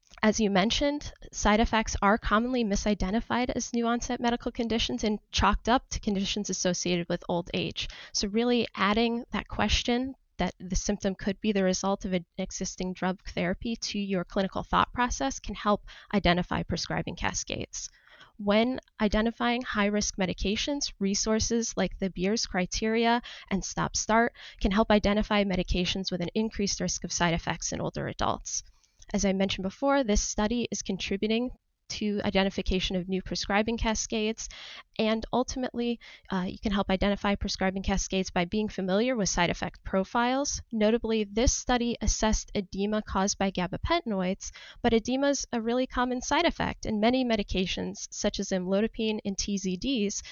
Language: English